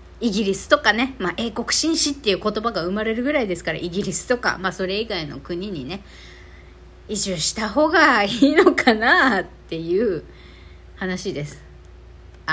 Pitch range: 180-280 Hz